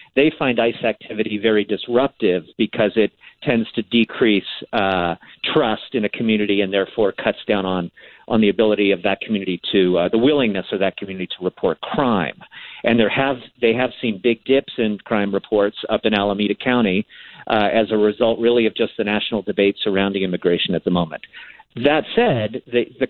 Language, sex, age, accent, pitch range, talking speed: English, male, 50-69, American, 110-140 Hz, 185 wpm